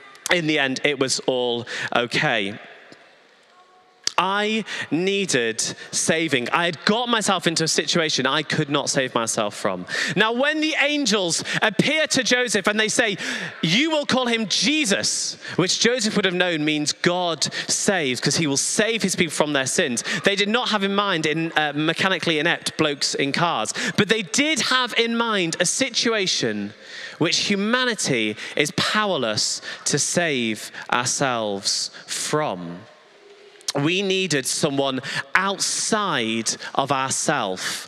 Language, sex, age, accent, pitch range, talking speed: English, male, 30-49, British, 155-240 Hz, 140 wpm